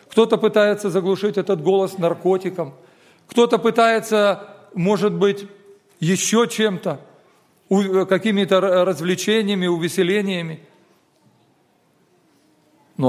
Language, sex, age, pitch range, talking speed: Russian, male, 40-59, 150-200 Hz, 75 wpm